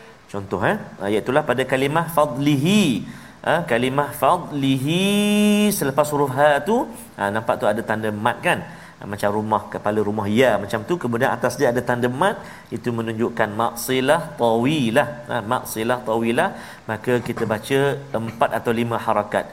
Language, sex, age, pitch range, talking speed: Malayalam, male, 40-59, 115-145 Hz, 150 wpm